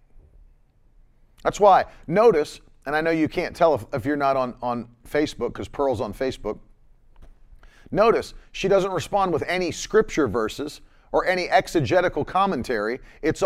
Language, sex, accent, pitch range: English, male, American, 120-170 Hz